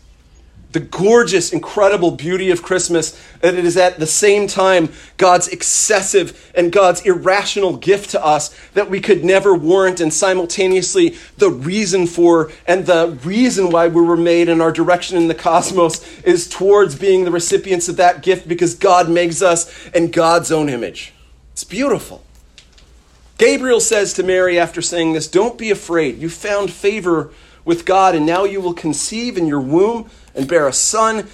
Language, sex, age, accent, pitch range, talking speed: English, male, 40-59, American, 155-195 Hz, 170 wpm